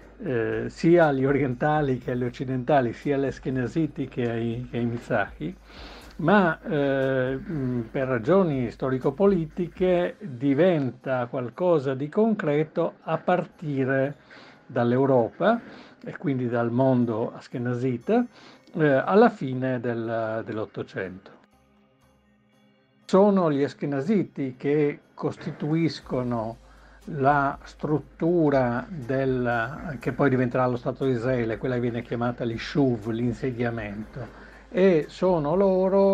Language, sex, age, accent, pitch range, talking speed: Italian, male, 60-79, native, 120-160 Hz, 100 wpm